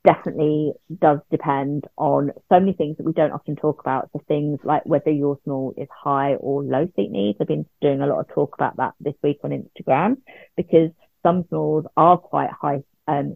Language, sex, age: English, female, 30-49